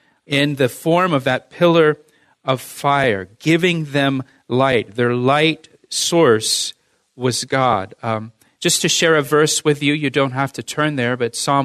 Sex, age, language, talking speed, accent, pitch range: male, 40-59, English, 165 wpm, American, 130-160 Hz